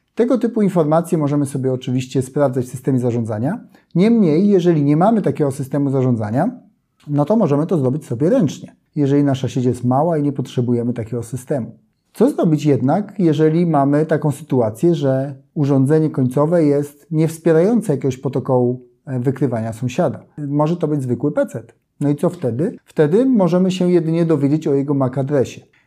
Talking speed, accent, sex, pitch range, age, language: 160 wpm, native, male, 130-160 Hz, 30-49, Polish